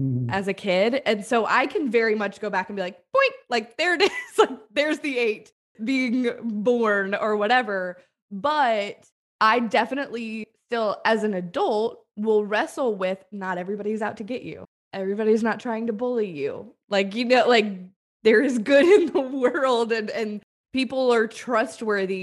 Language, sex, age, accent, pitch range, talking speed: English, female, 20-39, American, 195-235 Hz, 175 wpm